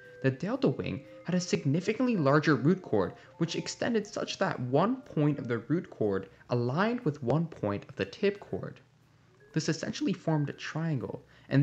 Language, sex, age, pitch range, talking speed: English, male, 20-39, 115-160 Hz, 170 wpm